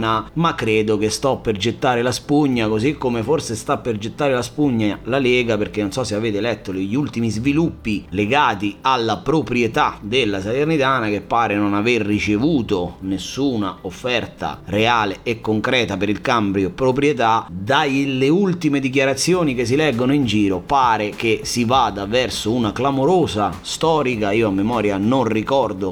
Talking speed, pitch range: 155 wpm, 105-140 Hz